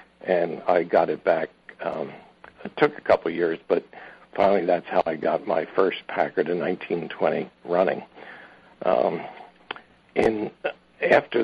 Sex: male